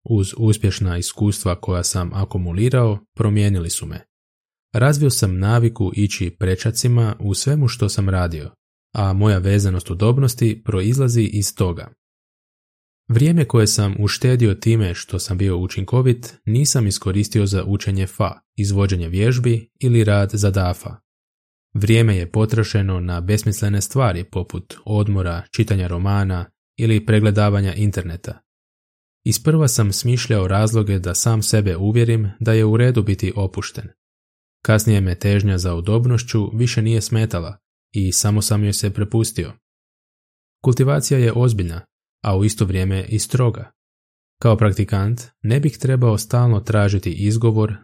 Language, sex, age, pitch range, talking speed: Croatian, male, 20-39, 95-115 Hz, 130 wpm